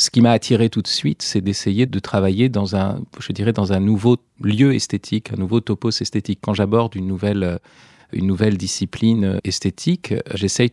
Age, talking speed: 40-59, 185 wpm